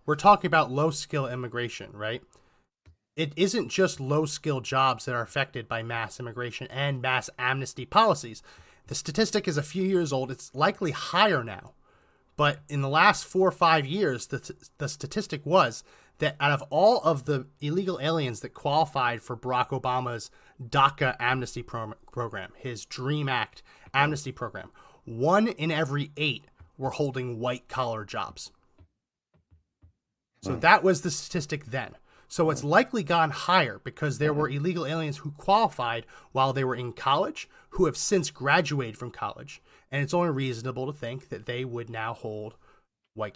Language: English